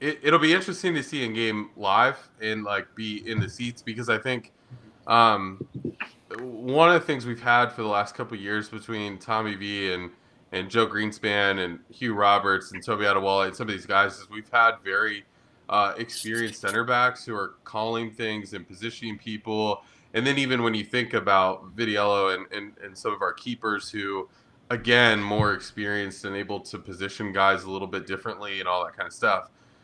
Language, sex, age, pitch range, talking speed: English, male, 20-39, 100-125 Hz, 195 wpm